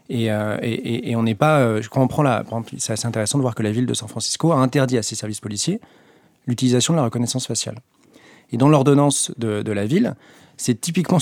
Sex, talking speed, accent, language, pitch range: male, 220 wpm, French, French, 115-145 Hz